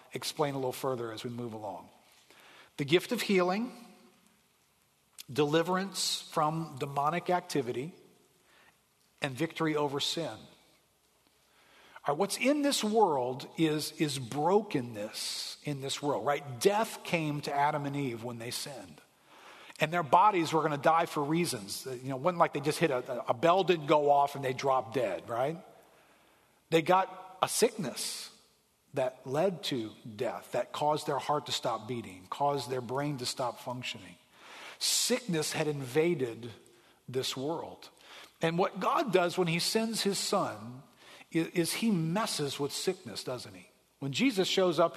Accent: American